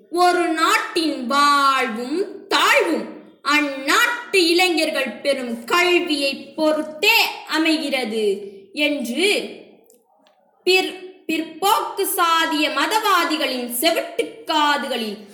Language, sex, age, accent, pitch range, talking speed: English, female, 20-39, Indian, 285-380 Hz, 65 wpm